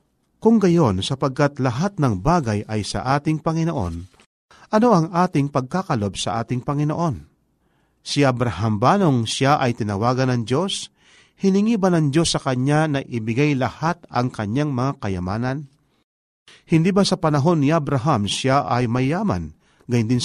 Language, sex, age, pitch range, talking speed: Filipino, male, 50-69, 115-160 Hz, 140 wpm